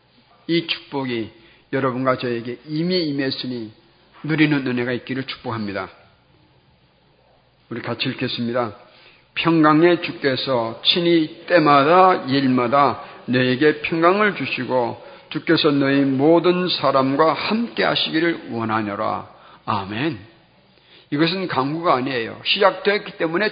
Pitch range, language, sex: 125-170 Hz, Korean, male